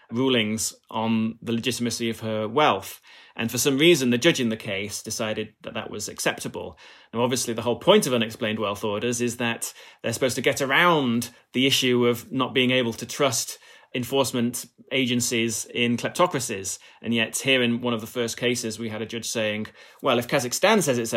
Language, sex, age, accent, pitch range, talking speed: English, male, 30-49, British, 110-130 Hz, 195 wpm